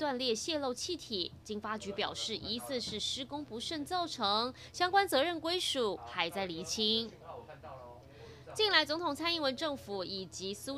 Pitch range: 205-300 Hz